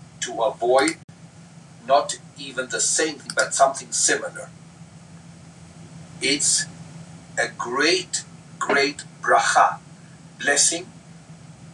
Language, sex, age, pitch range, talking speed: English, male, 50-69, 145-165 Hz, 80 wpm